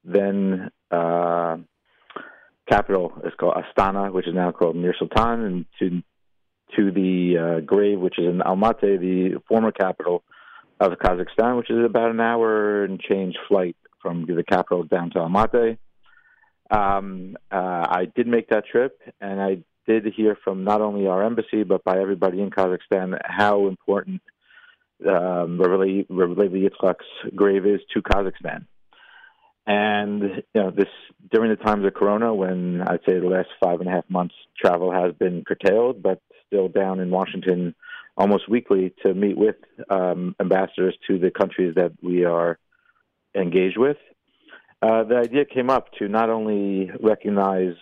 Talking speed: 155 wpm